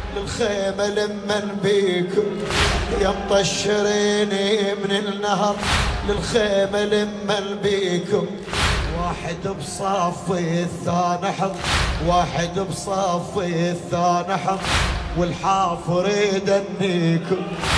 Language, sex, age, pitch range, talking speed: Arabic, male, 30-49, 175-205 Hz, 65 wpm